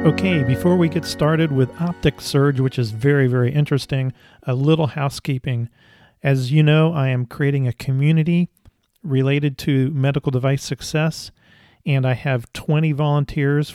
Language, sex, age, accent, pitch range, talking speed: English, male, 40-59, American, 125-150 Hz, 150 wpm